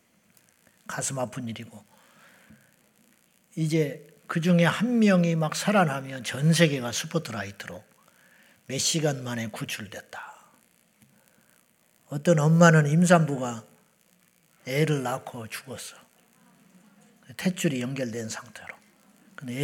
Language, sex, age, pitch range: Korean, male, 40-59, 125-175 Hz